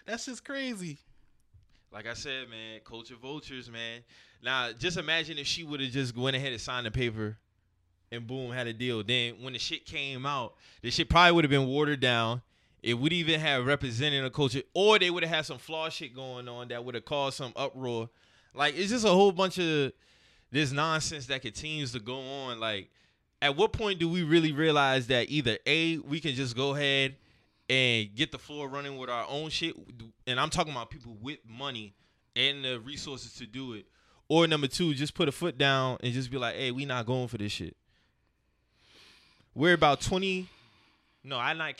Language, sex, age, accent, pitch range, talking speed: English, male, 20-39, American, 115-150 Hz, 205 wpm